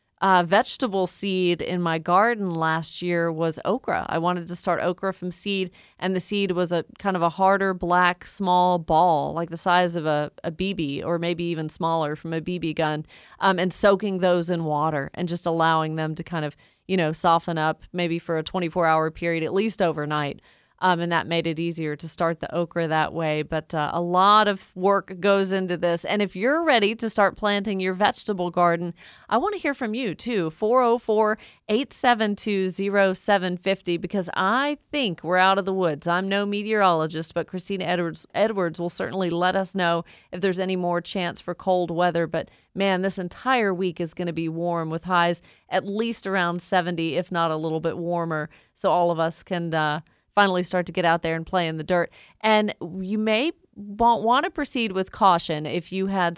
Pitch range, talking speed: 170-195 Hz, 200 wpm